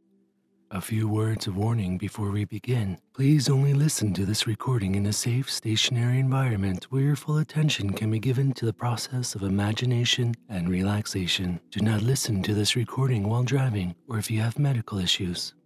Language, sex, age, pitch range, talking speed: English, male, 40-59, 105-130 Hz, 180 wpm